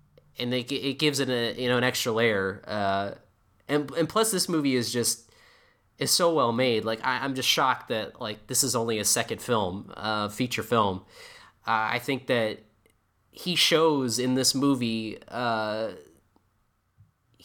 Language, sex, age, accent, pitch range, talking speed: English, male, 20-39, American, 110-135 Hz, 165 wpm